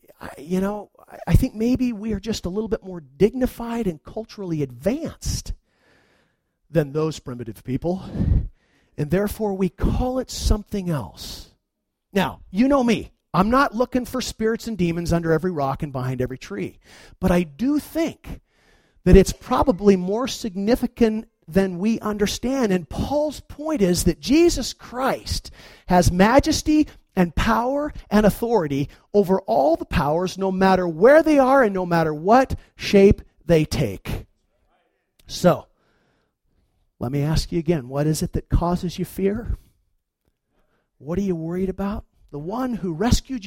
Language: English